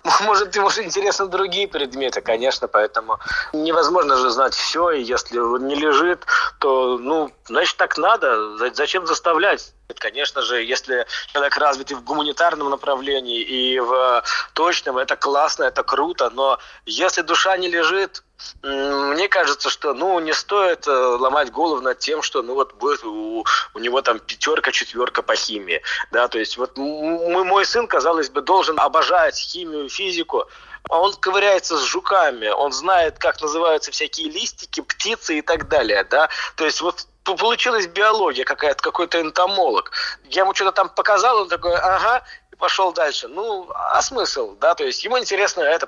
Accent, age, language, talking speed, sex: native, 20-39, Russian, 160 wpm, male